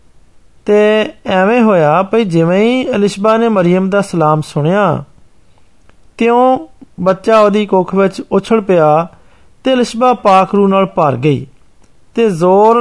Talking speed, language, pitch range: 100 wpm, Hindi, 170-215 Hz